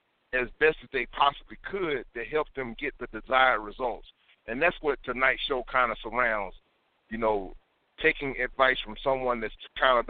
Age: 50-69